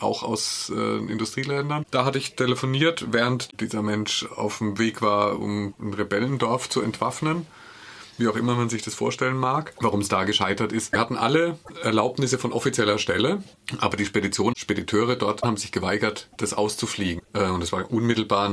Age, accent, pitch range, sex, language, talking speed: 30-49, German, 105-130 Hz, male, German, 180 wpm